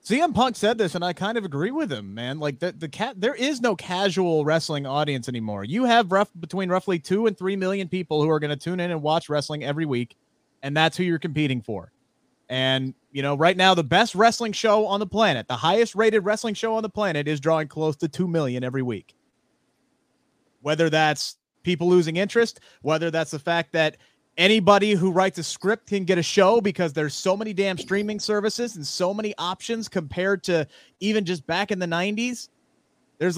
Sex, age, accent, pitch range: male, 30-49, American, 145-200 Hz